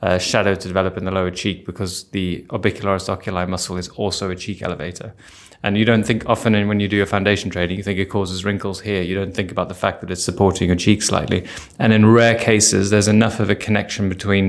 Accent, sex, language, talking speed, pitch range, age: British, male, English, 235 wpm, 95-110 Hz, 20-39